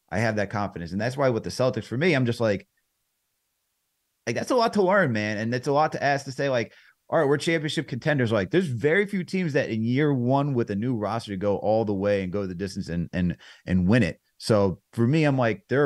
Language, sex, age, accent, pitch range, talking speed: English, male, 30-49, American, 100-135 Hz, 260 wpm